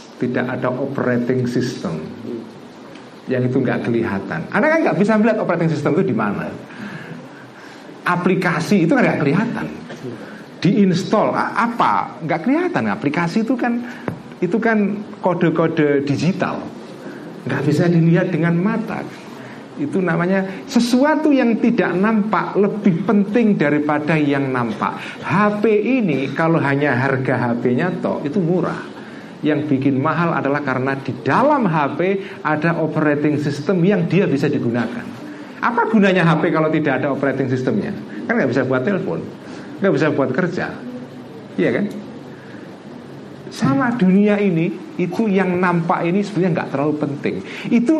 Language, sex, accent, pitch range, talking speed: Indonesian, male, native, 145-220 Hz, 130 wpm